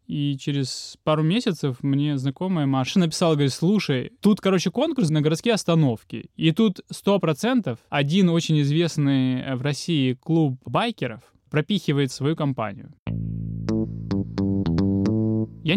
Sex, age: male, 20-39